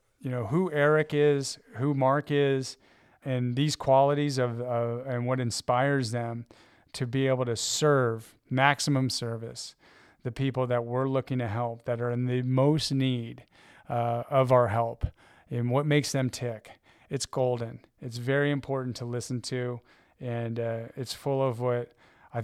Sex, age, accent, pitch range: male, 30-49, American, 120-135 Hz